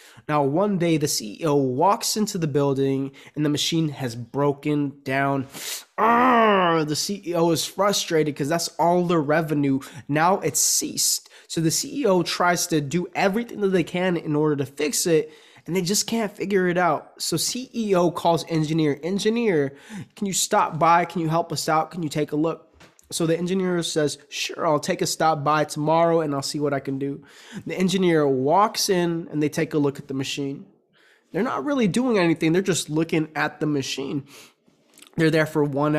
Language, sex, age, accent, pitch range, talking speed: English, male, 20-39, American, 150-190 Hz, 190 wpm